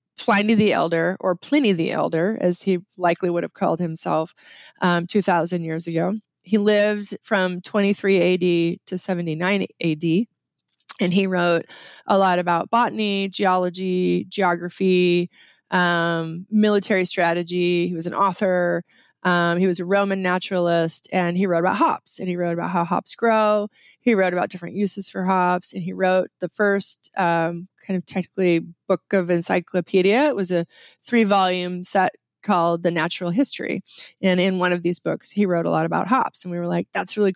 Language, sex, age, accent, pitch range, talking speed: English, female, 20-39, American, 175-200 Hz, 175 wpm